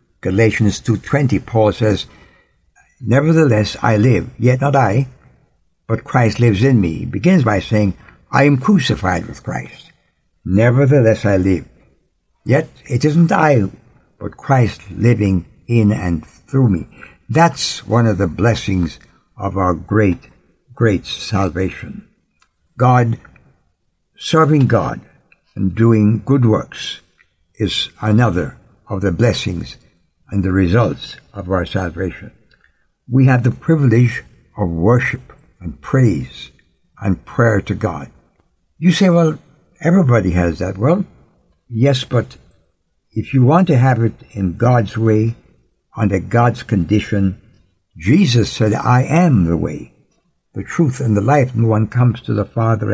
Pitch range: 100-130 Hz